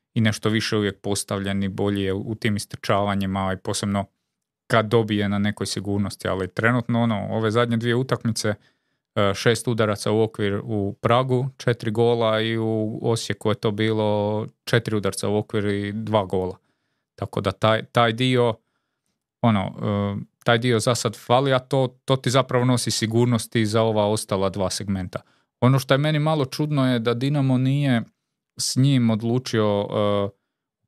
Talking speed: 155 wpm